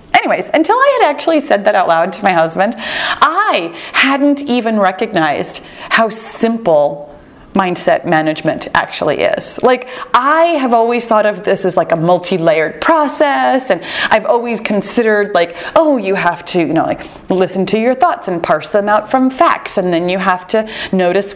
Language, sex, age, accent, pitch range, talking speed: English, female, 30-49, American, 180-255 Hz, 175 wpm